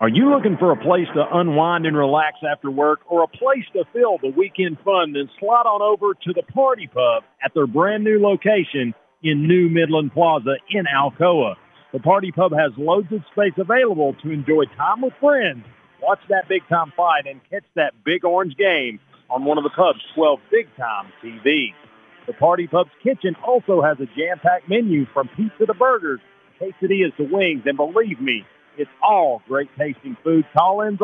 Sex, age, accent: male, 50-69, American